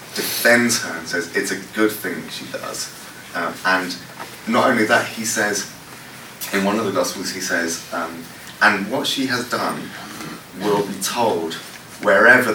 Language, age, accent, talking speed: English, 30-49, British, 165 wpm